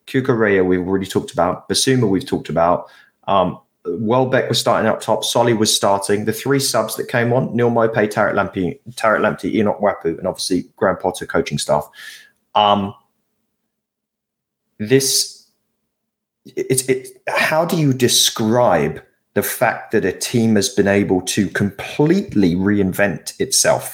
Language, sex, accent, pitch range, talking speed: English, male, British, 105-130 Hz, 145 wpm